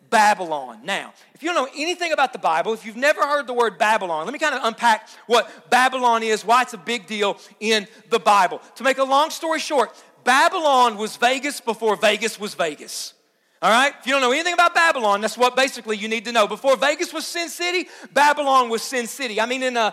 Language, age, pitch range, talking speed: English, 40-59, 215-270 Hz, 225 wpm